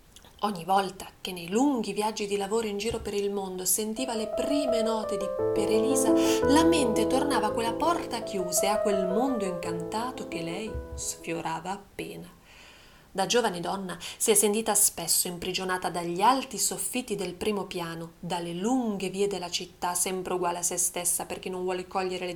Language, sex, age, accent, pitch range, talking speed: Italian, female, 30-49, native, 180-230 Hz, 175 wpm